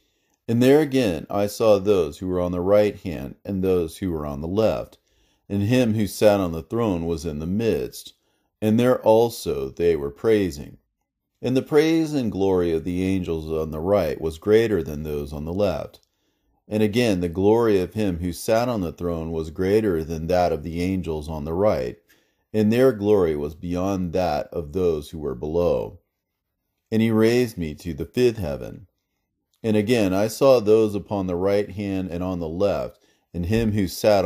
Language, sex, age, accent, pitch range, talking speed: English, male, 40-59, American, 85-110 Hz, 195 wpm